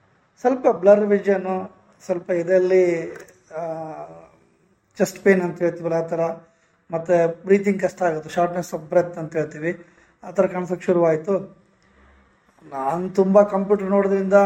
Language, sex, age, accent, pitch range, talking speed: Kannada, male, 20-39, native, 170-195 Hz, 115 wpm